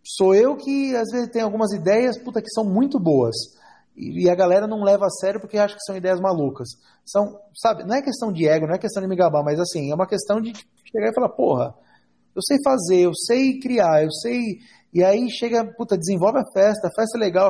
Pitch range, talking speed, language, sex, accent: 165-220 Hz, 230 wpm, Portuguese, male, Brazilian